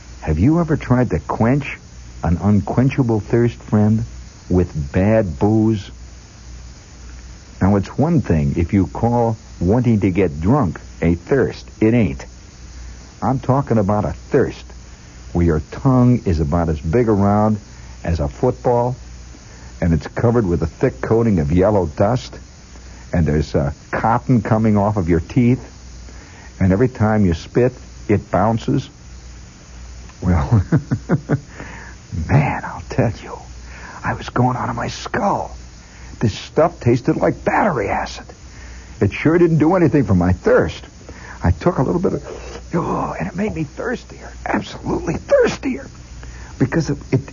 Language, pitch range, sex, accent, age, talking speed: English, 80-120 Hz, male, American, 60-79, 140 wpm